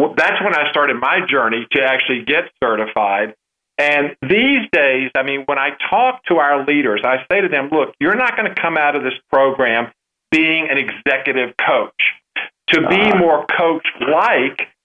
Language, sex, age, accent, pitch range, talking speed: English, male, 50-69, American, 135-160 Hz, 175 wpm